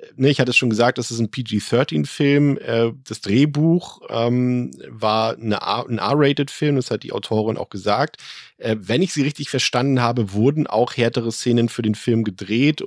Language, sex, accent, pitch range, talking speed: German, male, German, 105-125 Hz, 160 wpm